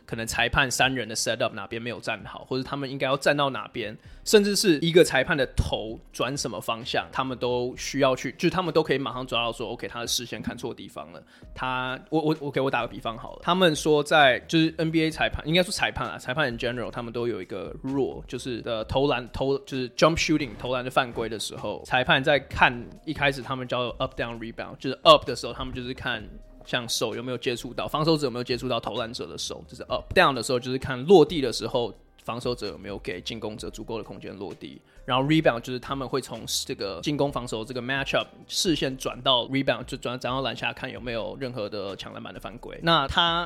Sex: male